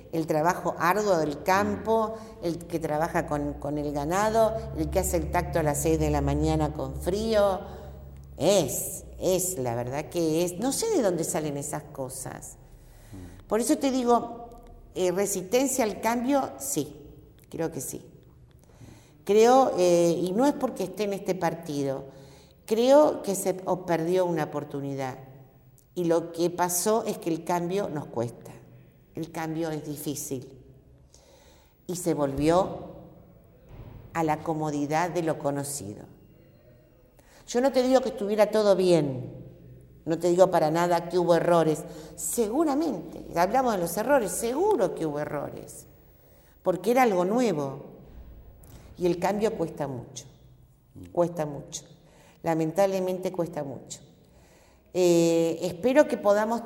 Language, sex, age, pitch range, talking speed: Spanish, female, 50-69, 145-200 Hz, 140 wpm